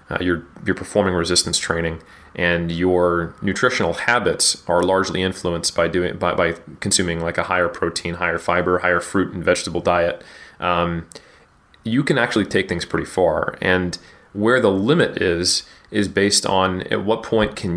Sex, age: male, 30-49